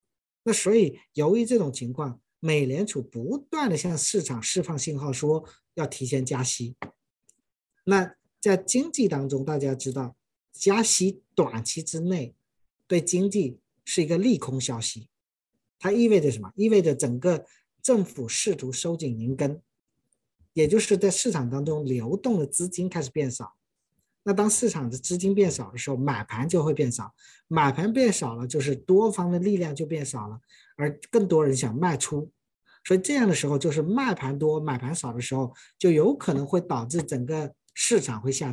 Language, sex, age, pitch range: Chinese, male, 50-69, 130-195 Hz